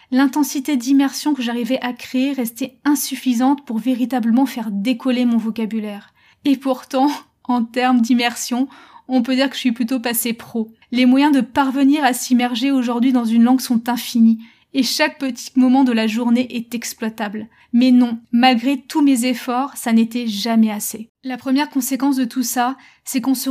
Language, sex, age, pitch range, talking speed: French, female, 20-39, 235-270 Hz, 175 wpm